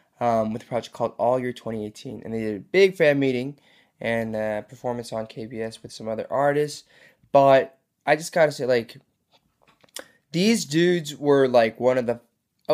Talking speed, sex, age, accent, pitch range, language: 185 wpm, male, 20-39, American, 115-135 Hz, English